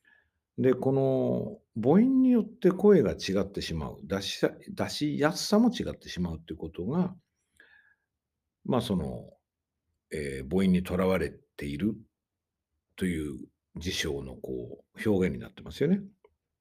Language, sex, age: Japanese, male, 60-79